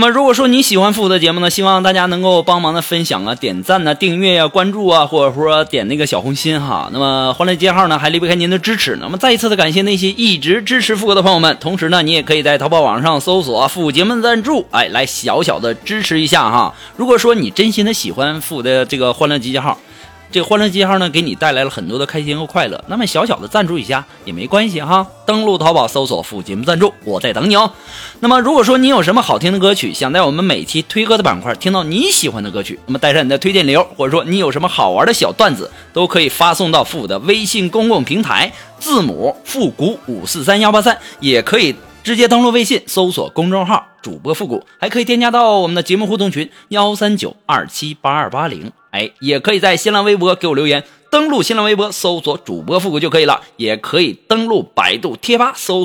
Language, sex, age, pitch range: Chinese, male, 20-39, 155-210 Hz